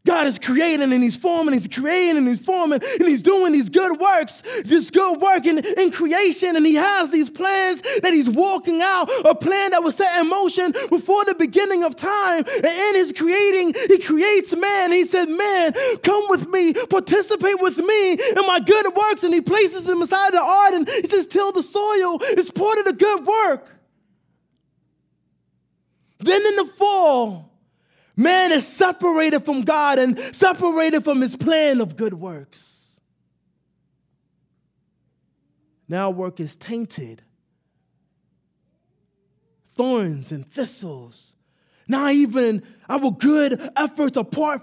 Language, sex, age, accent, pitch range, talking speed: English, male, 20-39, American, 255-375 Hz, 155 wpm